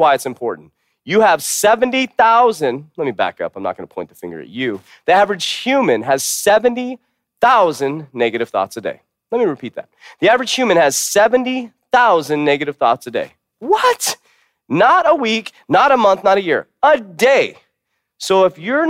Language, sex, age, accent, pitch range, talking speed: English, male, 30-49, American, 125-200 Hz, 185 wpm